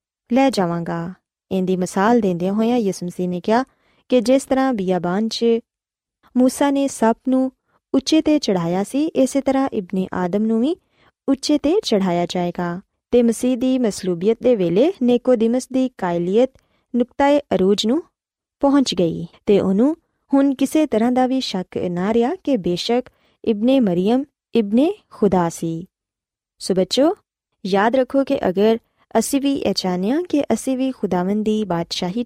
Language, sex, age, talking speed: Punjabi, female, 20-39, 105 wpm